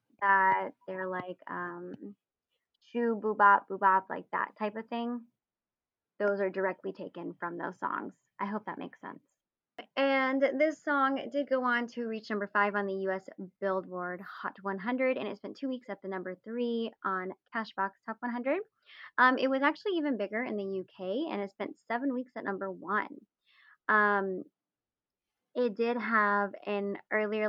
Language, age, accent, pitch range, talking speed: English, 20-39, American, 190-240 Hz, 165 wpm